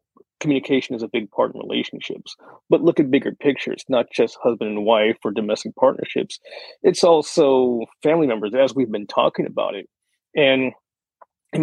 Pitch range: 125-165 Hz